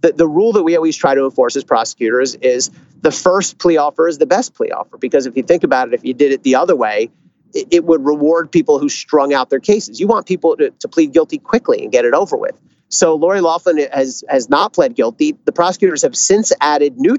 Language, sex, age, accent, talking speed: English, male, 40-59, American, 250 wpm